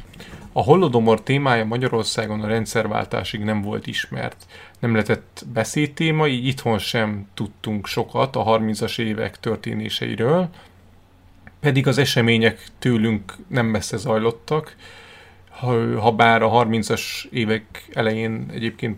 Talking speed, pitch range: 110 wpm, 110-125 Hz